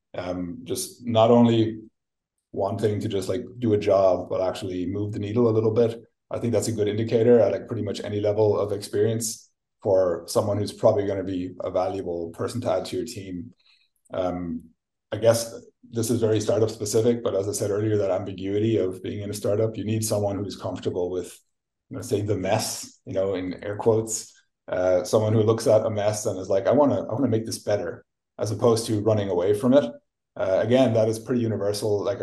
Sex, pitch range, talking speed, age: male, 95-115 Hz, 215 wpm, 30-49